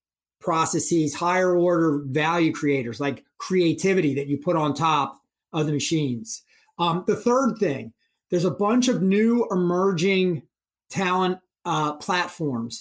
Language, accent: English, American